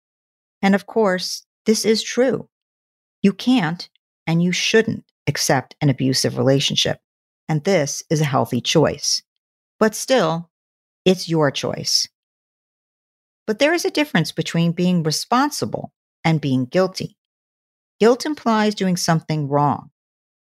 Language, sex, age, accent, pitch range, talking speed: English, female, 50-69, American, 155-220 Hz, 125 wpm